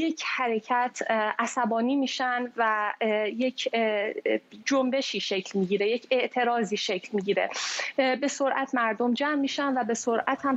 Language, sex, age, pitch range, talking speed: Persian, female, 10-29, 220-265 Hz, 125 wpm